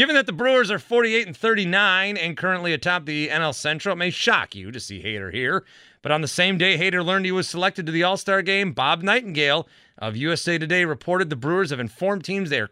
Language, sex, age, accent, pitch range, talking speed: English, male, 30-49, American, 120-180 Hz, 230 wpm